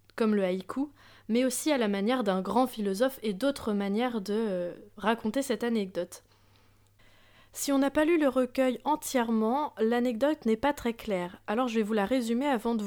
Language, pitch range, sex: French, 205-255 Hz, female